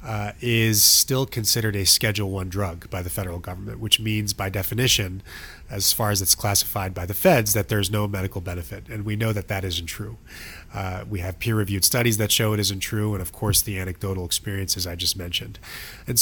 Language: English